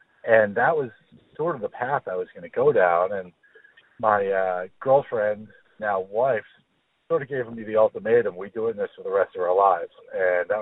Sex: male